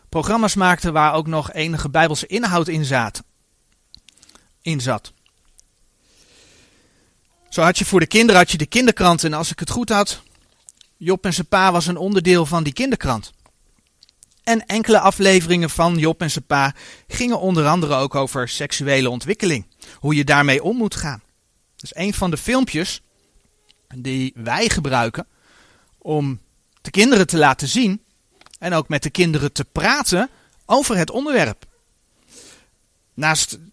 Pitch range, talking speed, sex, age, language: 145-200 Hz, 150 wpm, male, 40-59, Dutch